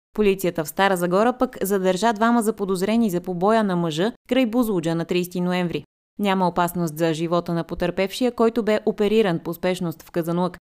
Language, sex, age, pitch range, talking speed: Bulgarian, female, 20-39, 170-220 Hz, 175 wpm